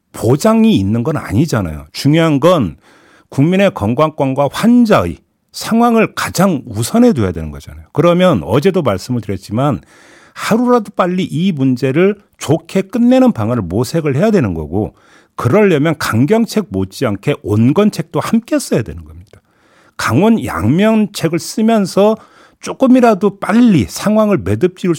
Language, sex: Korean, male